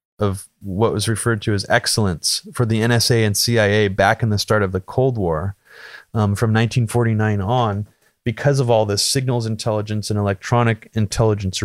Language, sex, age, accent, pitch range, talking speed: English, male, 30-49, American, 100-120 Hz, 170 wpm